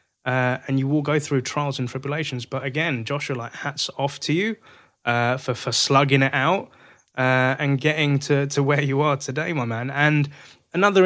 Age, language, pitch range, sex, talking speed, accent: 20-39, English, 130-150 Hz, male, 195 wpm, British